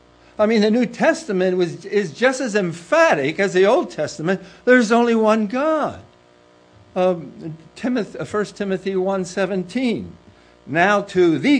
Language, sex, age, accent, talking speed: English, male, 60-79, American, 130 wpm